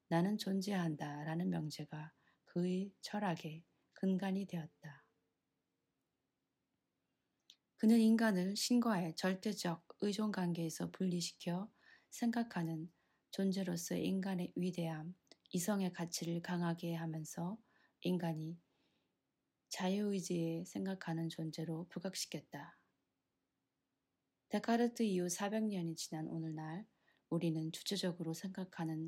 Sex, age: female, 20-39